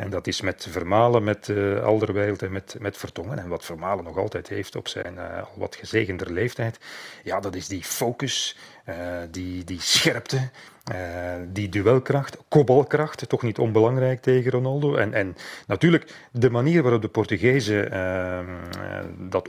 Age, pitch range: 40-59, 95-125 Hz